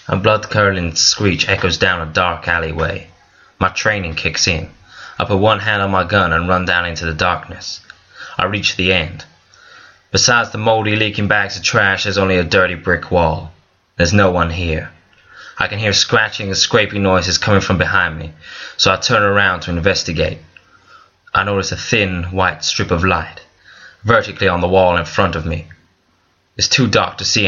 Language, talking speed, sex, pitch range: English, 185 wpm, male, 85-100 Hz